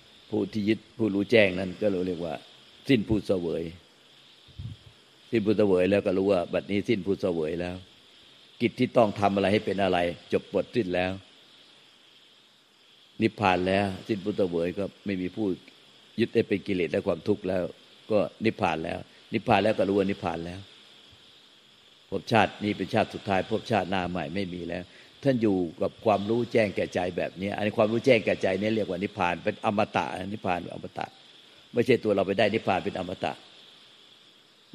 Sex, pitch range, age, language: male, 90-105 Hz, 60-79, Thai